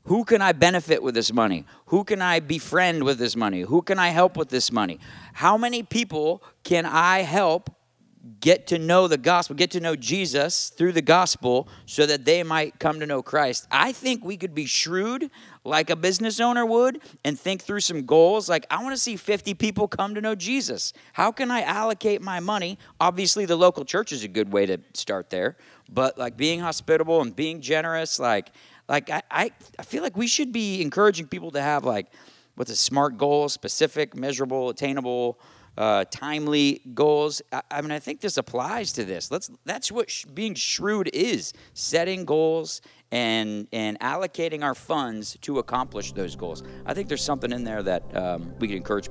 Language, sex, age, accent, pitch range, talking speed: English, male, 40-59, American, 130-190 Hz, 195 wpm